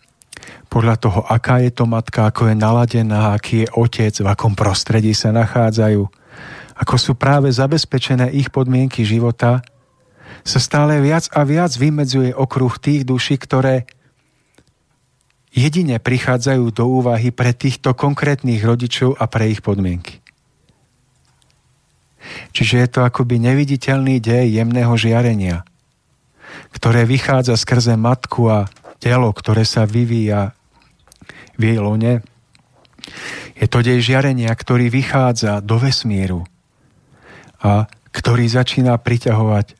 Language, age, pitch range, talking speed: Slovak, 40-59, 110-130 Hz, 115 wpm